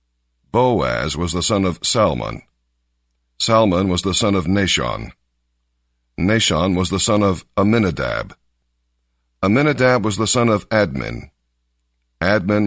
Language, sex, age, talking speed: English, male, 60-79, 120 wpm